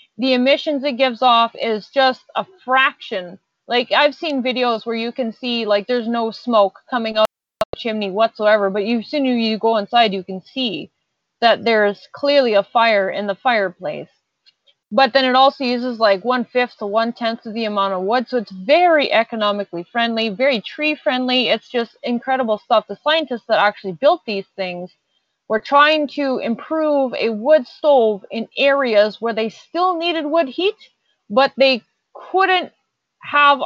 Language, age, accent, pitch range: English, 30-49, American, 215-270 Hz